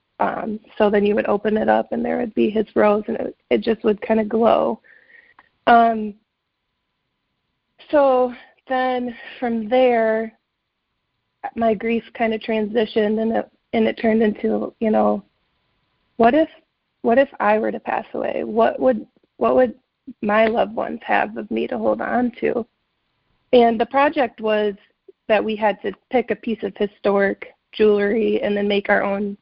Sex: female